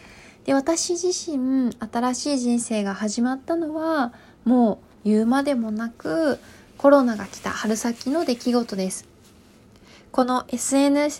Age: 20-39